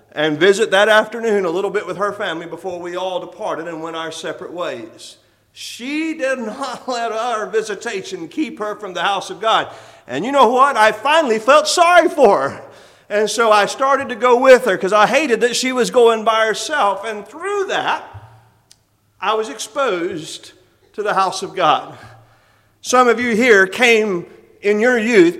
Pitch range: 220-315 Hz